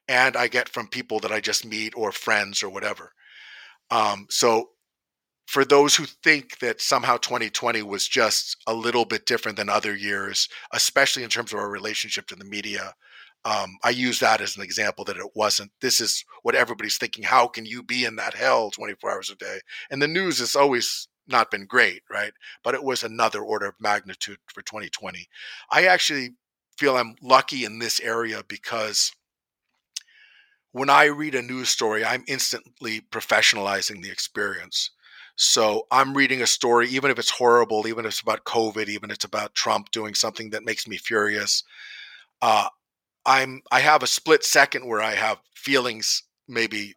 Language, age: English, 40-59